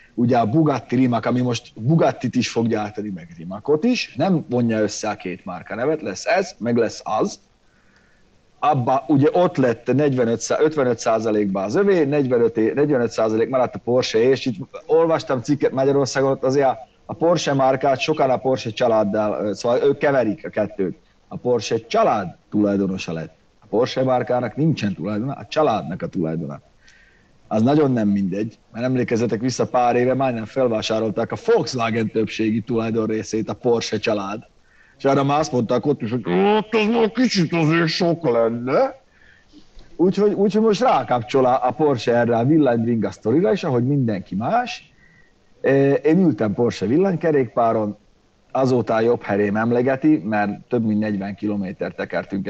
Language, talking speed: Hungarian, 150 wpm